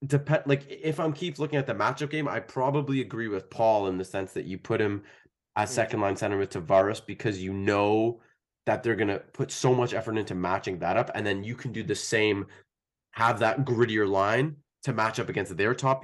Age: 20-39